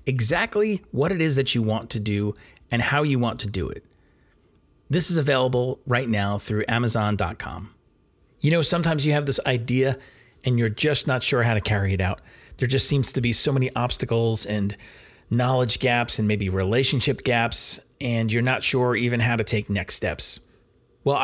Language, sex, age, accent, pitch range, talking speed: English, male, 30-49, American, 105-135 Hz, 185 wpm